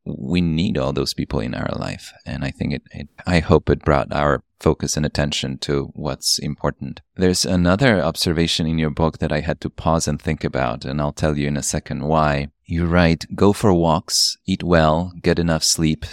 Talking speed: 210 wpm